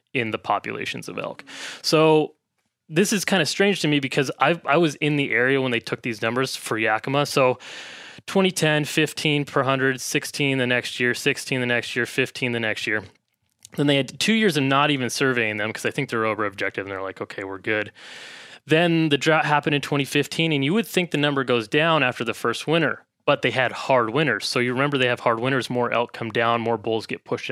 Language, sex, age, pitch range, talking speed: English, male, 20-39, 120-150 Hz, 225 wpm